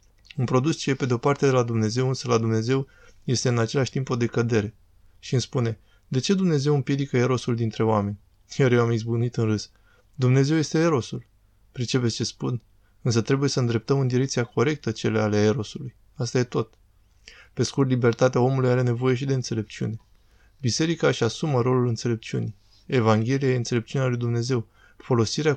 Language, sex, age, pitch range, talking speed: Romanian, male, 20-39, 110-130 Hz, 175 wpm